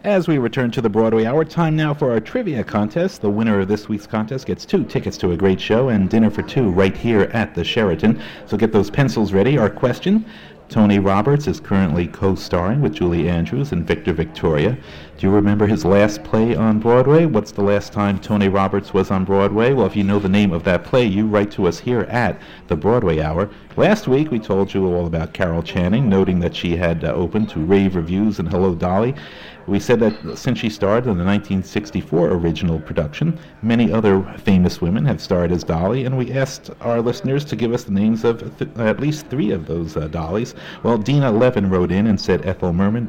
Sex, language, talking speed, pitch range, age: male, English, 215 wpm, 95-120 Hz, 50-69